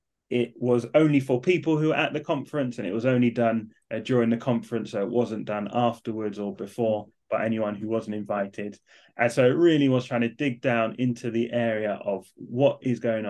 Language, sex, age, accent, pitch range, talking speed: English, male, 20-39, British, 110-140 Hz, 210 wpm